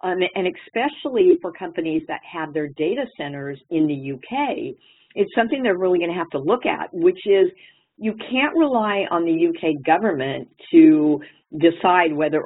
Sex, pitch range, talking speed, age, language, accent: female, 145-185 Hz, 170 wpm, 50-69, English, American